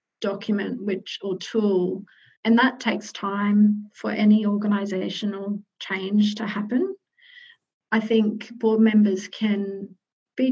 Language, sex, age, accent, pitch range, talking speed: English, female, 30-49, Australian, 210-230 Hz, 115 wpm